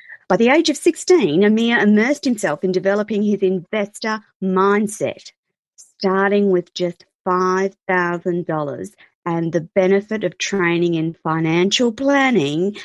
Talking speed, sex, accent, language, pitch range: 115 wpm, female, Australian, English, 170-210 Hz